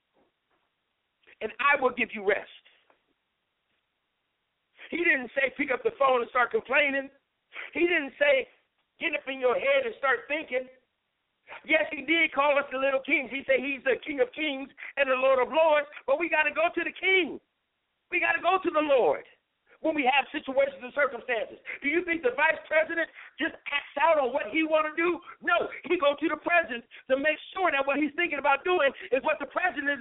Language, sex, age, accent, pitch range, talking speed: English, male, 50-69, American, 270-330 Hz, 200 wpm